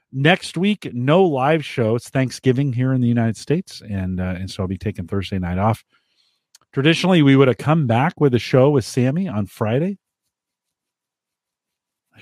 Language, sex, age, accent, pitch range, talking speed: English, male, 40-59, American, 100-135 Hz, 175 wpm